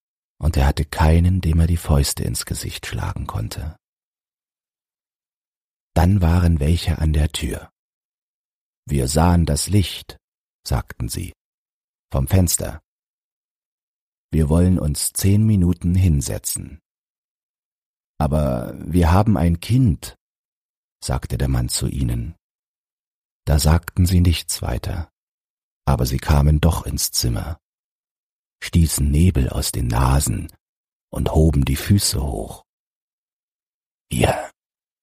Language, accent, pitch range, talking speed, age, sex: German, German, 75-90 Hz, 110 wpm, 40-59, male